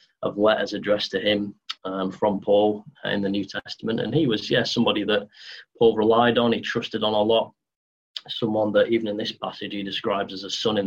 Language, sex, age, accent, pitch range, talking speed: English, male, 20-39, British, 100-115 Hz, 215 wpm